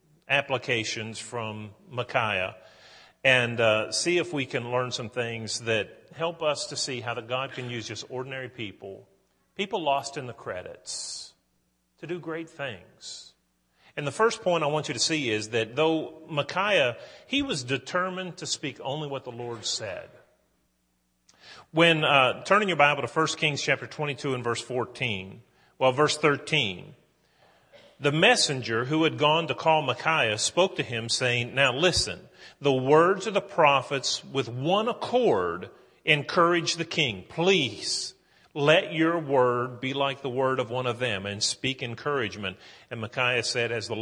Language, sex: English, male